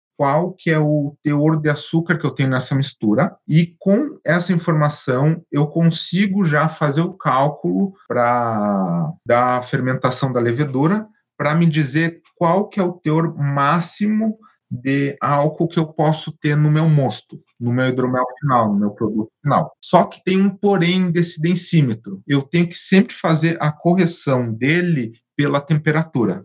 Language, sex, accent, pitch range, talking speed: Portuguese, male, Brazilian, 130-170 Hz, 155 wpm